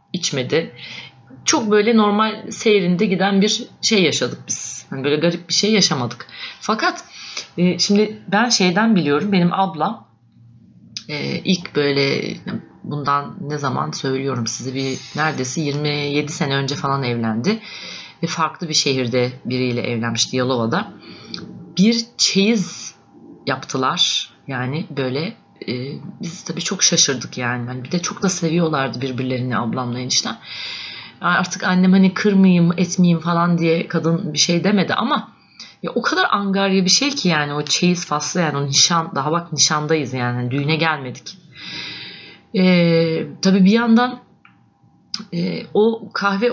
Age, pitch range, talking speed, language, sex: 30-49, 140-195 Hz, 135 wpm, Turkish, female